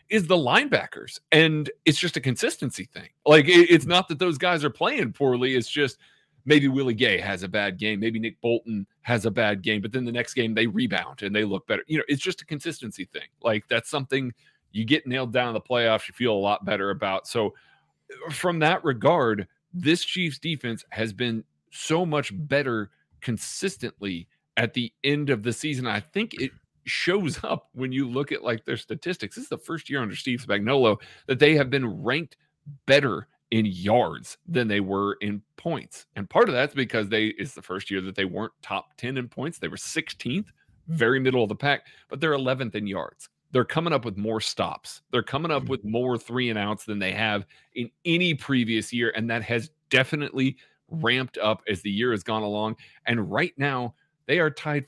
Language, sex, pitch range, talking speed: English, male, 110-150 Hz, 205 wpm